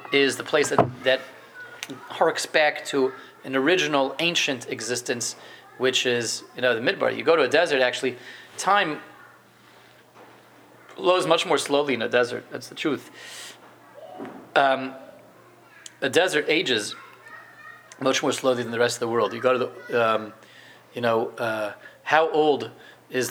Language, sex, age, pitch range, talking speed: English, male, 30-49, 125-150 Hz, 150 wpm